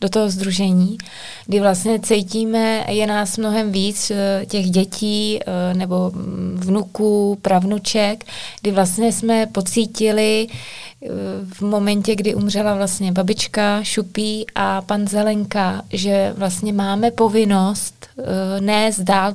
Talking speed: 110 wpm